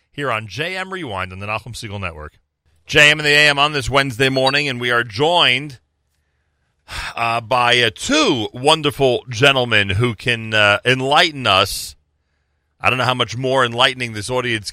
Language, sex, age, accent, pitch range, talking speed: English, male, 40-59, American, 90-125 Hz, 165 wpm